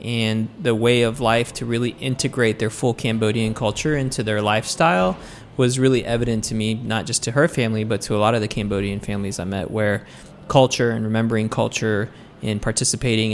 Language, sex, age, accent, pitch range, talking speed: English, male, 20-39, American, 110-130 Hz, 190 wpm